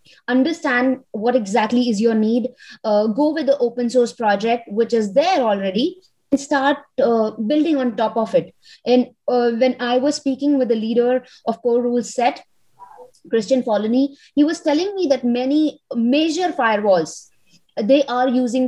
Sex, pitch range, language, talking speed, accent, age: female, 225-280 Hz, English, 165 wpm, Indian, 20-39